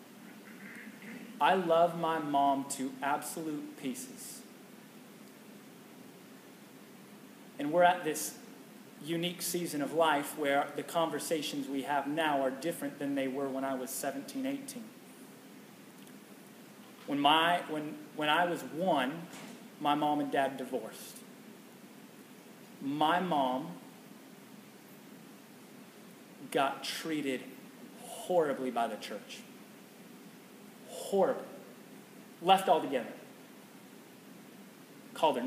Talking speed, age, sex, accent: 95 wpm, 30-49, male, American